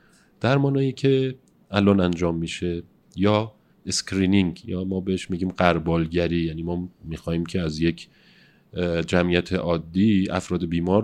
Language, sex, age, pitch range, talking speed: Persian, male, 40-59, 90-115 Hz, 125 wpm